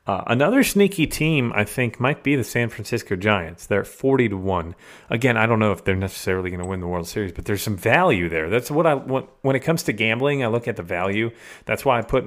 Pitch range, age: 95-130 Hz, 30-49